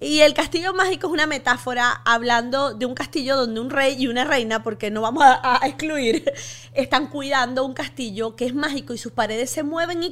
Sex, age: female, 20-39